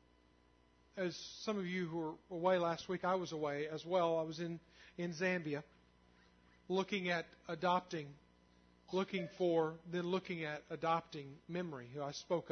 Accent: American